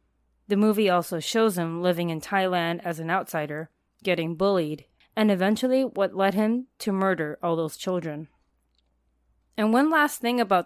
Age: 20-39